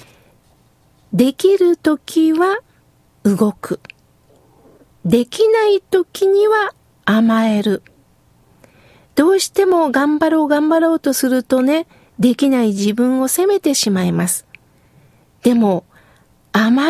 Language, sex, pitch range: Japanese, female, 235-310 Hz